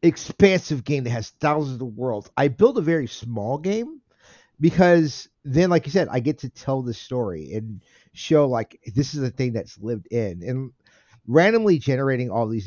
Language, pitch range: English, 115-155 Hz